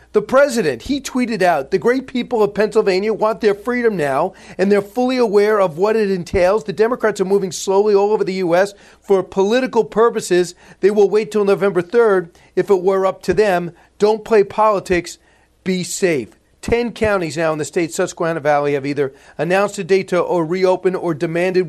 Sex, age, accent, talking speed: male, 40-59, American, 190 wpm